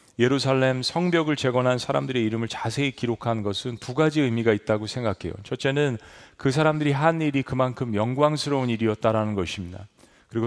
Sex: male